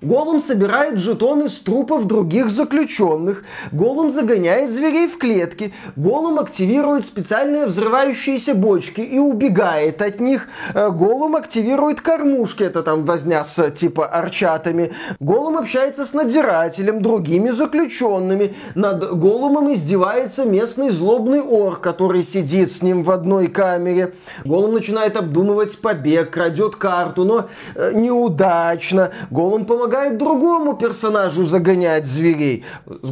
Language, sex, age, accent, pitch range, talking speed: Russian, male, 20-39, native, 165-225 Hz, 115 wpm